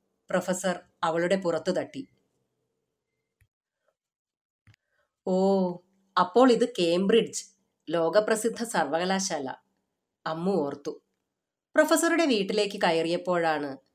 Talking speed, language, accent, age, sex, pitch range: 65 wpm, Malayalam, native, 30-49, female, 170-225 Hz